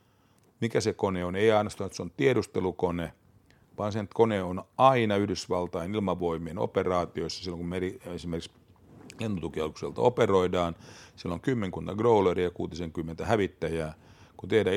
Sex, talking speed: male, 135 wpm